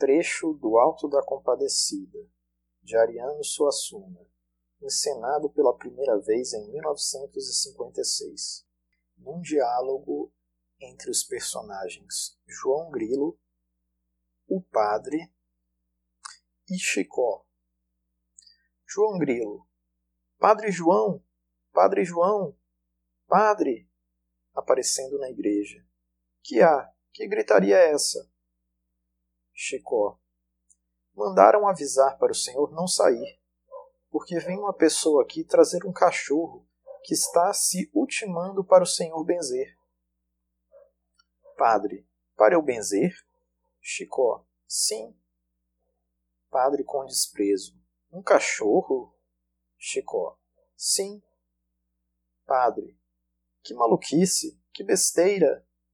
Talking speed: 90 wpm